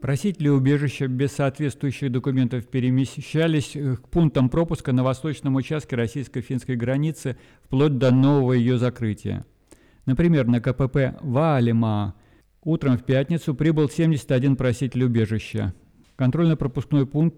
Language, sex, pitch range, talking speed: Russian, male, 120-140 Hz, 110 wpm